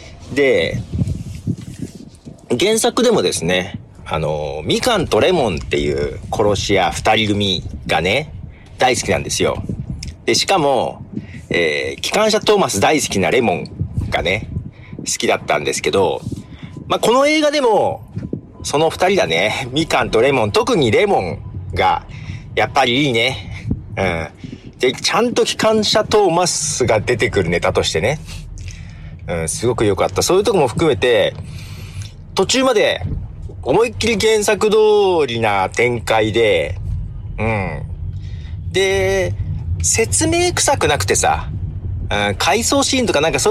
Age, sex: 40-59, male